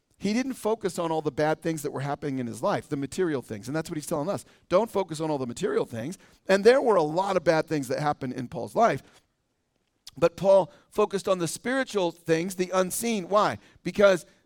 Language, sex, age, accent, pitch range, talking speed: English, male, 40-59, American, 150-200 Hz, 225 wpm